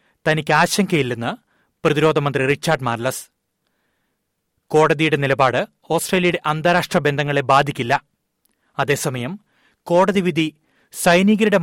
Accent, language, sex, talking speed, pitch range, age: native, Malayalam, male, 75 wpm, 140-165 Hz, 30-49